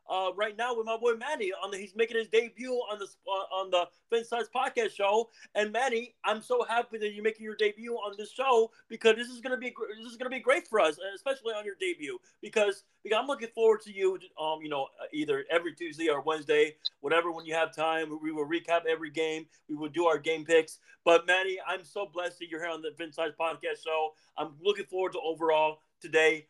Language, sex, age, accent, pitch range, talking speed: English, male, 30-49, American, 160-230 Hz, 230 wpm